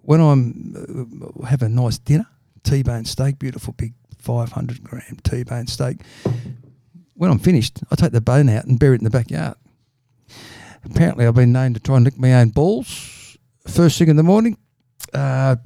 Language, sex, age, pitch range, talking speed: English, male, 50-69, 120-145 Hz, 180 wpm